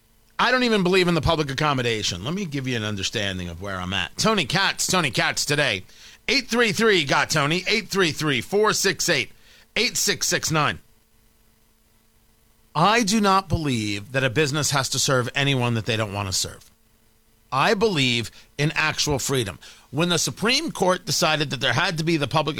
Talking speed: 160 wpm